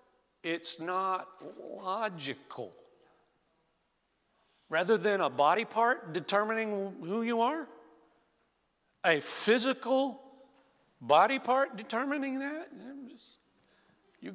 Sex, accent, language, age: male, American, English, 50-69